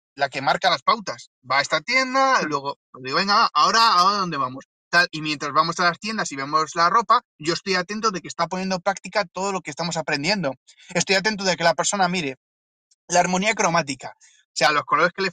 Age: 20-39